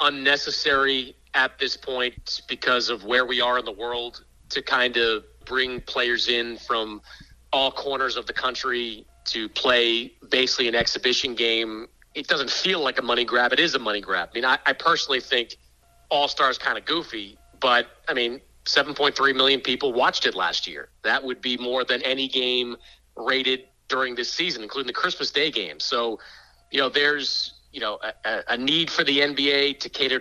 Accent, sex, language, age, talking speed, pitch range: American, male, English, 40-59, 185 wpm, 120-140 Hz